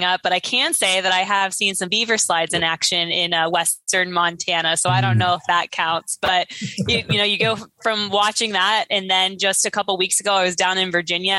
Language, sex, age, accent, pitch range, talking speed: English, female, 20-39, American, 170-210 Hz, 245 wpm